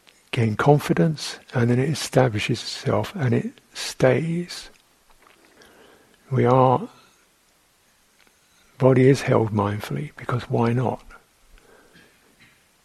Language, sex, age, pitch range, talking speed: English, male, 60-79, 120-145 Hz, 90 wpm